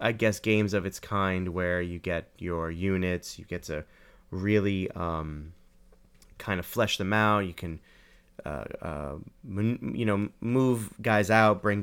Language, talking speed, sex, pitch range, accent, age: English, 155 wpm, male, 90-110 Hz, American, 30-49